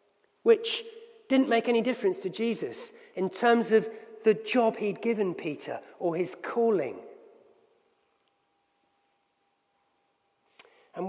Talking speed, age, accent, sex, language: 105 wpm, 40-59, British, male, English